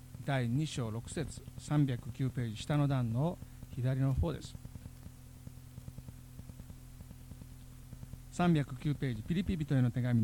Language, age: Japanese, 60-79